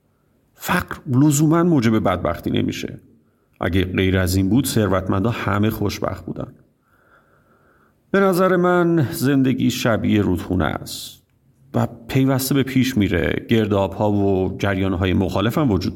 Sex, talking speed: male, 130 wpm